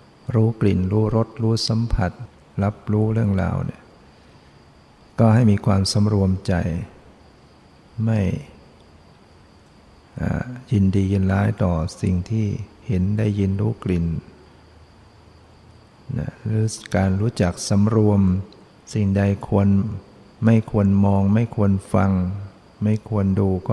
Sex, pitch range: male, 95-110 Hz